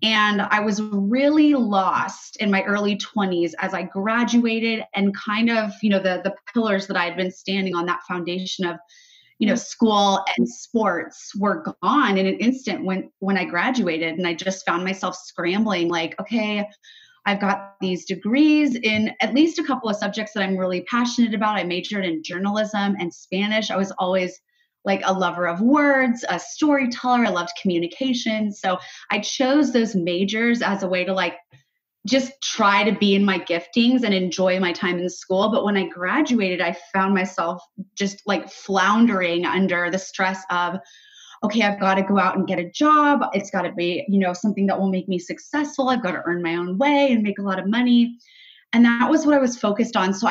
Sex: female